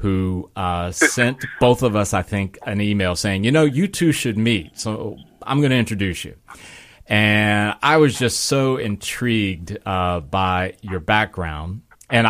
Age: 30-49